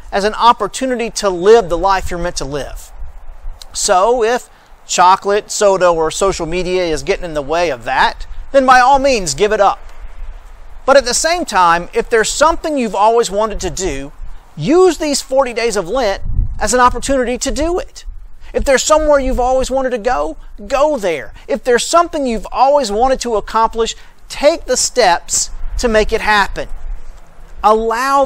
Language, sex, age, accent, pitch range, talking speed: English, male, 40-59, American, 165-245 Hz, 175 wpm